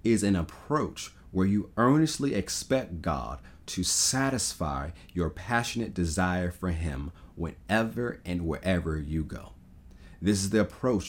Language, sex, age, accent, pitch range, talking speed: English, male, 40-59, American, 85-95 Hz, 130 wpm